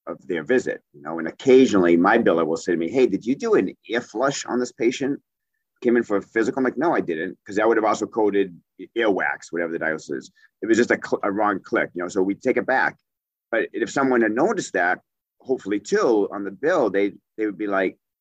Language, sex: English, male